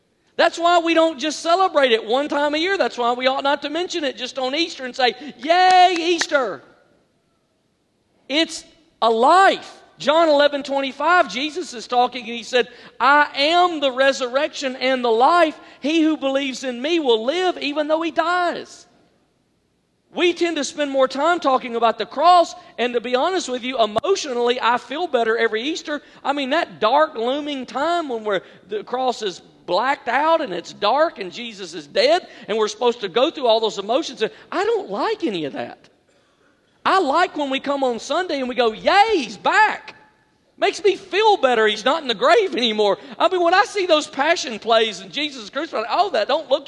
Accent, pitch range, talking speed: American, 250-345 Hz, 200 wpm